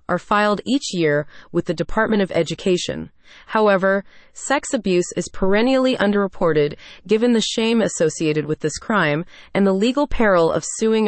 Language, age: English, 30-49